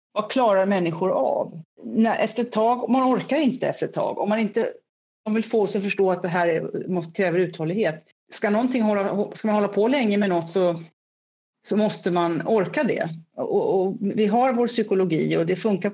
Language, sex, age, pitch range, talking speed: Swedish, female, 40-59, 180-230 Hz, 195 wpm